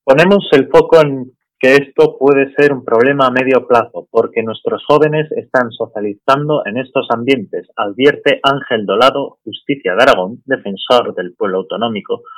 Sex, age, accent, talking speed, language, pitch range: male, 30-49, Spanish, 150 wpm, Spanish, 125-200 Hz